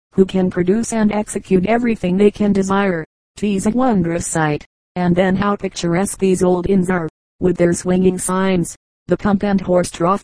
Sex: female